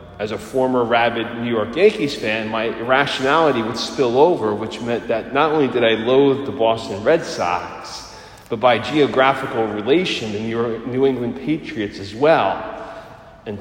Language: English